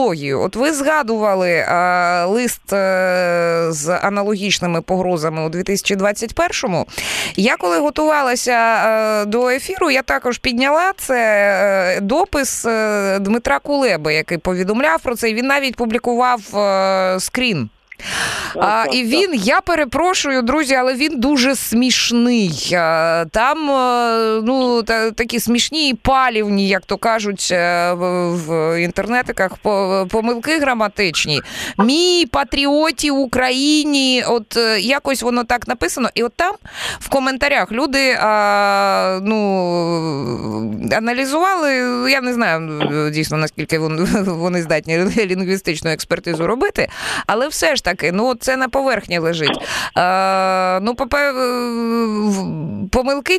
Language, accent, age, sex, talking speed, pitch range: Ukrainian, native, 20-39, female, 95 wpm, 185-260 Hz